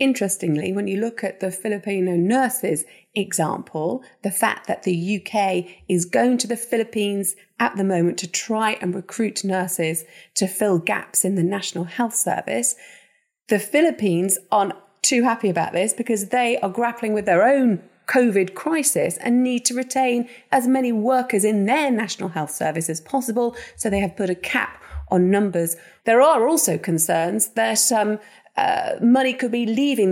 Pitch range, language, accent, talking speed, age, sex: 185-245 Hz, English, British, 165 wpm, 30-49, female